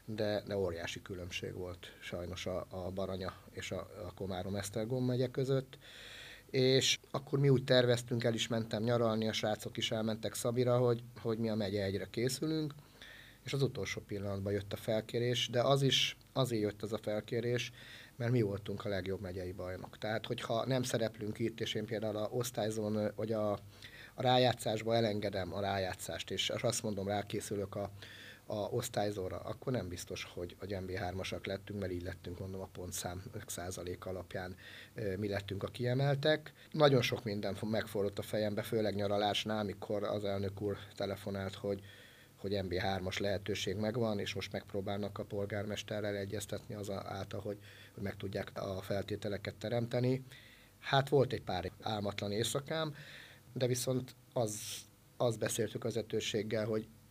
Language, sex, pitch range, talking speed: Hungarian, male, 100-120 Hz, 155 wpm